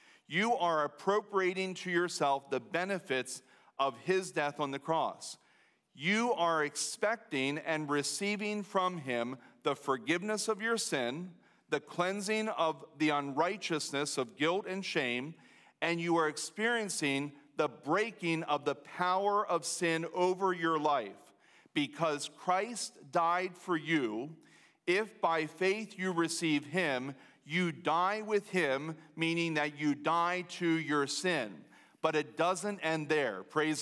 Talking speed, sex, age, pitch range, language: 135 wpm, male, 40-59, 150-185 Hz, English